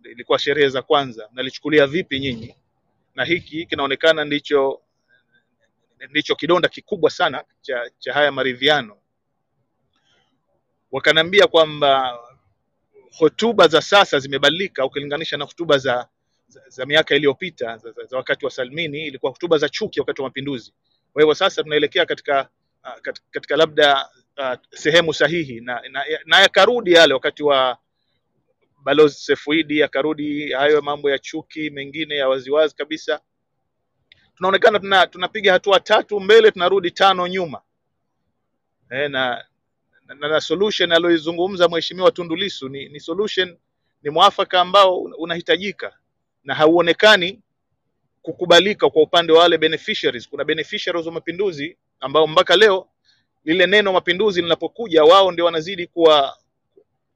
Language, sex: Swahili, male